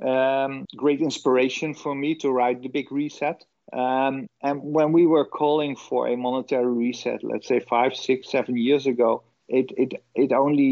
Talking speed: 175 wpm